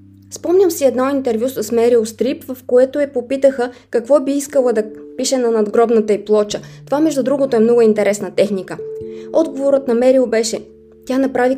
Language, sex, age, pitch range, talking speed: Bulgarian, female, 20-39, 200-260 Hz, 175 wpm